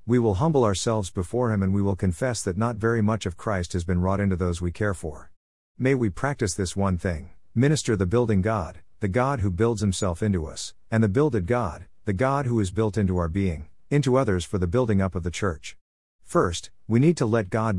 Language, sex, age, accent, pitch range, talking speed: English, male, 50-69, American, 90-115 Hz, 230 wpm